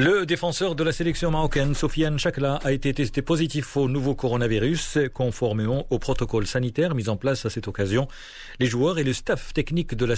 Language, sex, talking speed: Arabic, male, 195 wpm